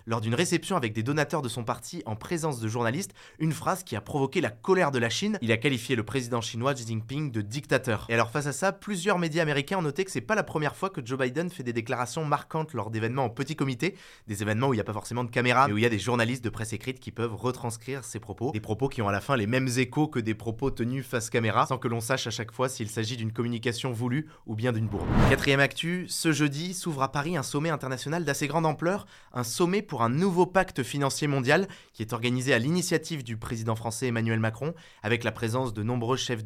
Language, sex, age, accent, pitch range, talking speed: French, male, 20-39, French, 115-155 Hz, 255 wpm